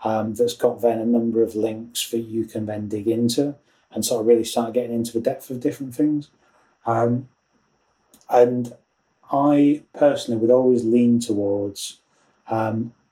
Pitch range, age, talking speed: 105-120 Hz, 30-49, 160 wpm